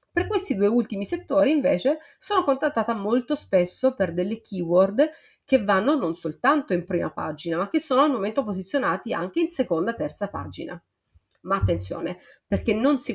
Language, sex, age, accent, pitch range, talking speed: Italian, female, 30-49, native, 170-215 Hz, 165 wpm